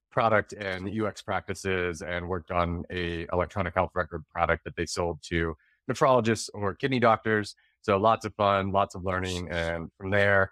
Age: 30-49